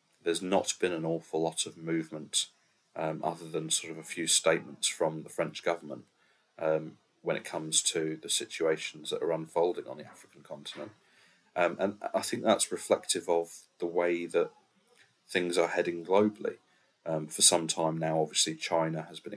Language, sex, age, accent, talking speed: English, male, 30-49, British, 175 wpm